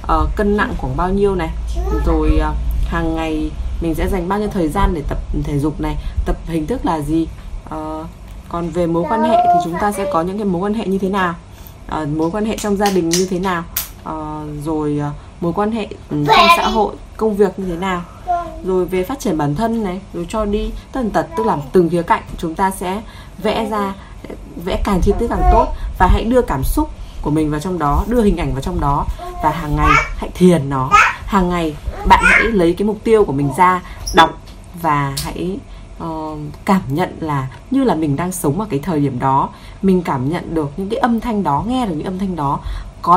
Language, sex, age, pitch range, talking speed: Vietnamese, female, 20-39, 155-210 Hz, 220 wpm